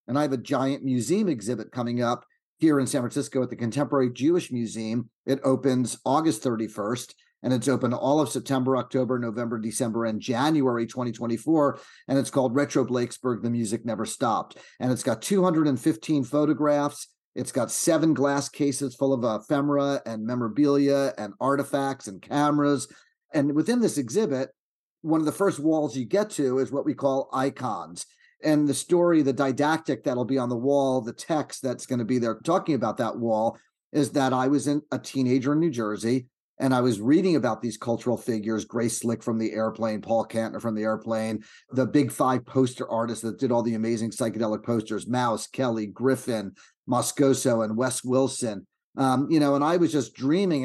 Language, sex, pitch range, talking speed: English, male, 115-140 Hz, 185 wpm